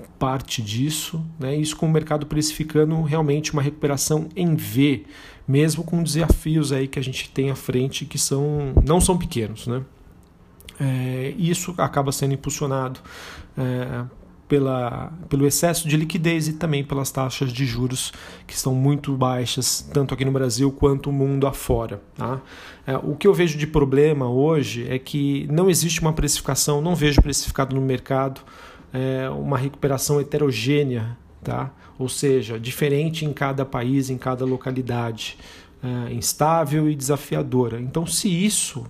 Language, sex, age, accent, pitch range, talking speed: Portuguese, male, 40-59, Brazilian, 130-150 Hz, 150 wpm